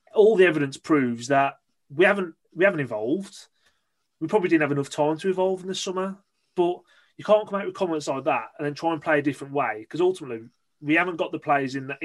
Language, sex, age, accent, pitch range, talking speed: English, male, 30-49, British, 145-190 Hz, 235 wpm